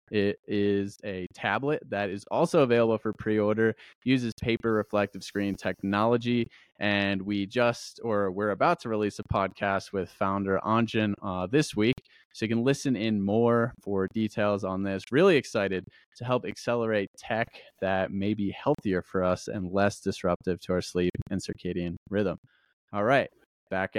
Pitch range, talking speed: 100-120 Hz, 165 wpm